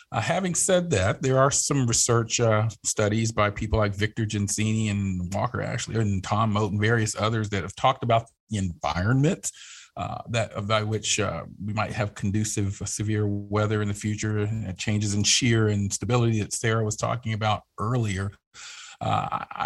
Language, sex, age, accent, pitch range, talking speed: English, male, 40-59, American, 100-120 Hz, 180 wpm